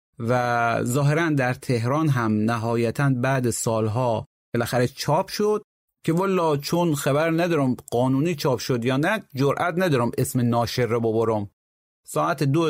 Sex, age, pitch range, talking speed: male, 30-49, 120-165 Hz, 130 wpm